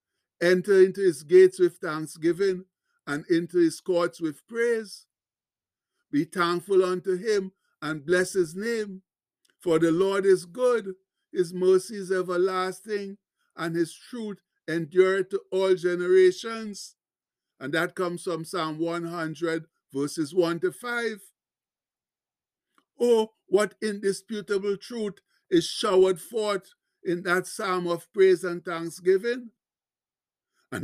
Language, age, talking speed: English, 60-79, 120 wpm